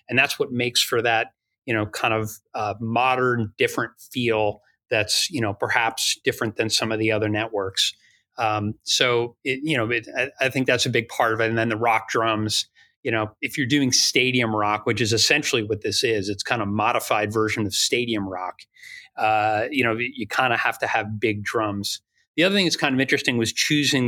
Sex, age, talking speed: male, 30-49, 210 wpm